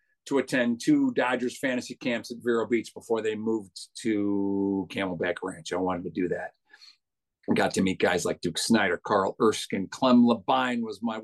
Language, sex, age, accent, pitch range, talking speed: English, male, 50-69, American, 110-135 Hz, 180 wpm